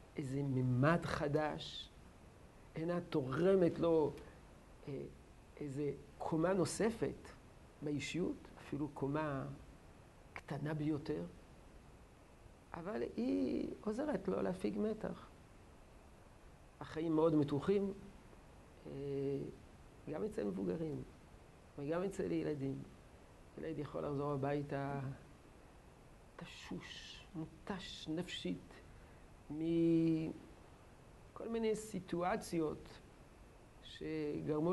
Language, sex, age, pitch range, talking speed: Hebrew, male, 50-69, 145-175 Hz, 75 wpm